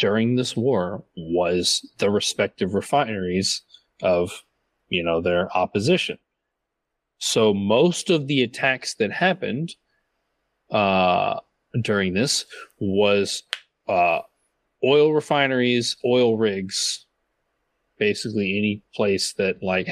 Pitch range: 95-125 Hz